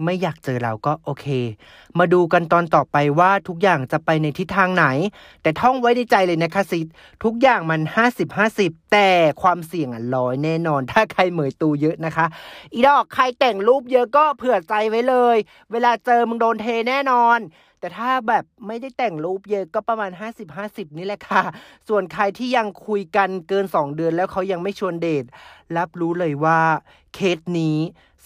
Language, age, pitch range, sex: Thai, 30-49, 165-230 Hz, male